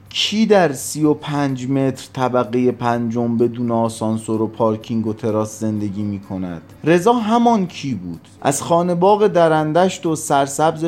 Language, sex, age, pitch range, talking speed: Persian, male, 30-49, 105-130 Hz, 145 wpm